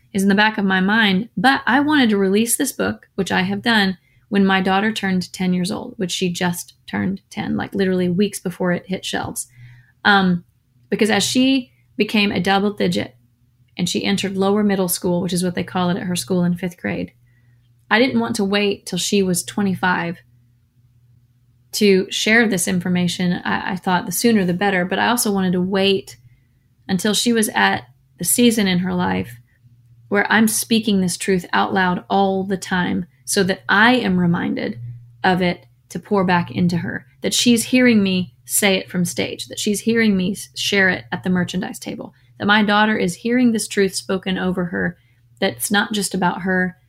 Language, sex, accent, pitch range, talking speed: English, female, American, 175-205 Hz, 195 wpm